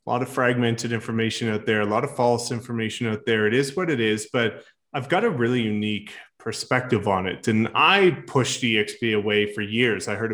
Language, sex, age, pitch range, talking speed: English, male, 20-39, 110-135 Hz, 215 wpm